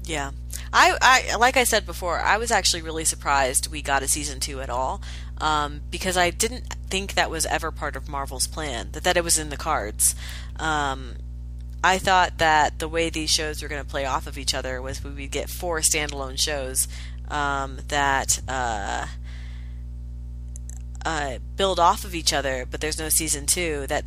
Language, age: English, 30-49